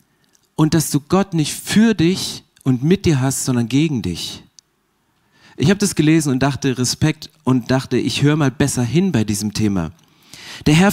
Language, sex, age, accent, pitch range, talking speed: German, male, 40-59, German, 130-165 Hz, 180 wpm